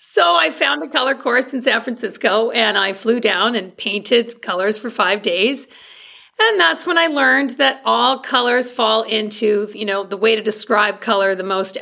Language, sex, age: English, female, 40-59